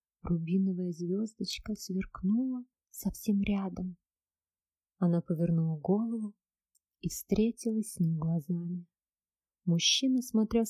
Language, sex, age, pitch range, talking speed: Russian, female, 30-49, 185-220 Hz, 85 wpm